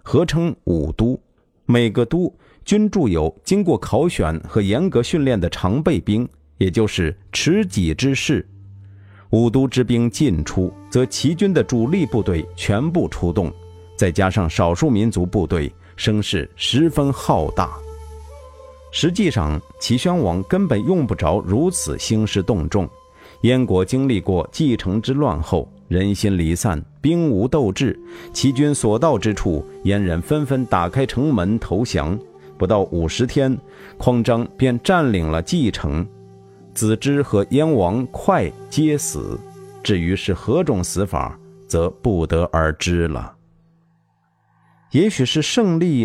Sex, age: male, 50-69